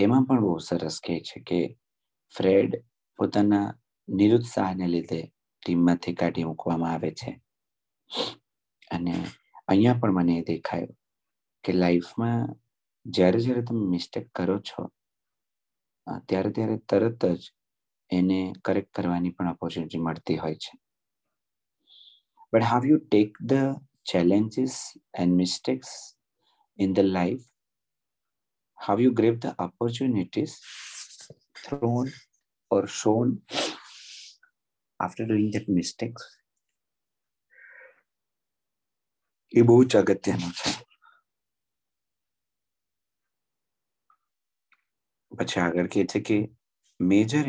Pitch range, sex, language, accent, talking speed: 85-115 Hz, male, English, Indian, 35 wpm